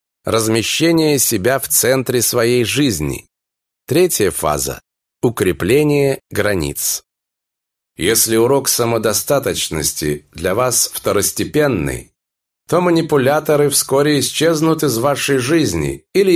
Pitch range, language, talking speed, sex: 105-150 Hz, Russian, 90 wpm, male